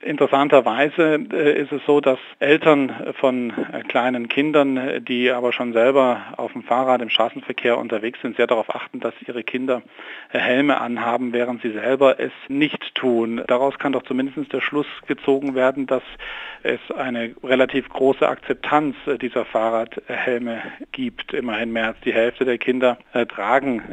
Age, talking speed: 40-59, 150 wpm